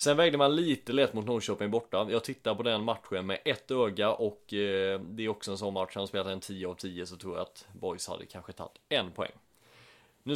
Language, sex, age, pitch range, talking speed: English, male, 30-49, 95-125 Hz, 235 wpm